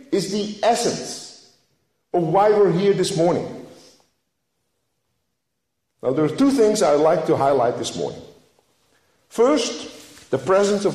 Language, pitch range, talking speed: English, 155-250 Hz, 130 wpm